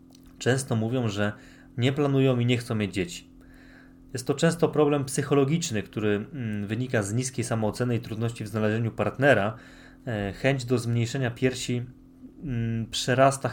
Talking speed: 135 wpm